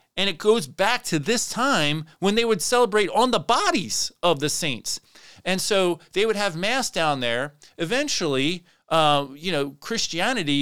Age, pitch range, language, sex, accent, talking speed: 30-49, 135-185 Hz, English, male, American, 170 wpm